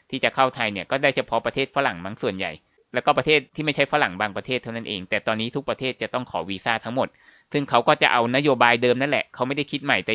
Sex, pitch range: male, 115-140 Hz